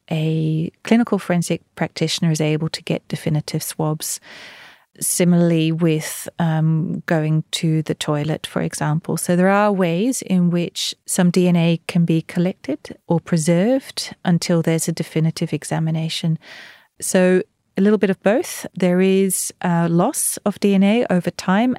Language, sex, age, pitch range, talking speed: English, female, 30-49, 160-180 Hz, 140 wpm